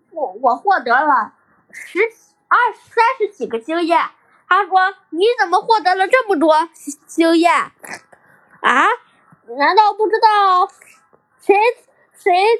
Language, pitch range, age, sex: Chinese, 300-410 Hz, 10-29, female